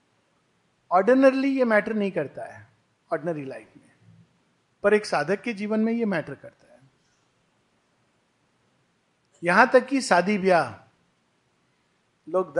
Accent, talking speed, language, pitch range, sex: native, 120 wpm, Hindi, 170-225 Hz, male